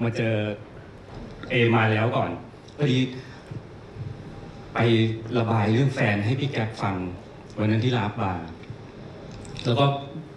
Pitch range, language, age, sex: 110-135 Hz, Thai, 60-79, male